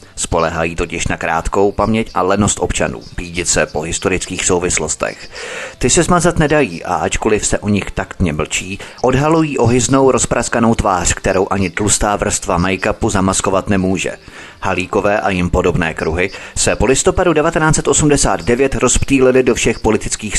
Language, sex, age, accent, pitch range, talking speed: Czech, male, 30-49, native, 95-125 Hz, 140 wpm